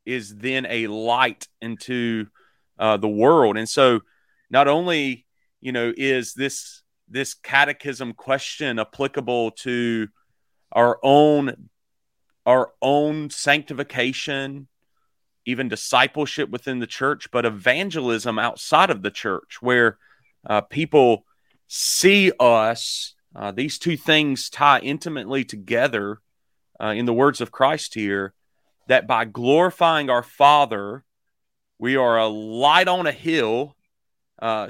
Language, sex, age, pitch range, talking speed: English, male, 30-49, 110-145 Hz, 120 wpm